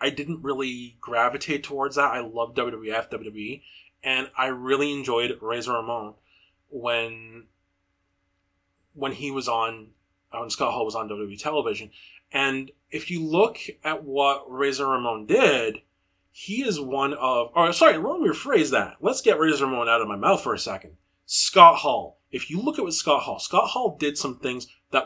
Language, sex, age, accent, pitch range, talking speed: English, male, 30-49, American, 115-145 Hz, 170 wpm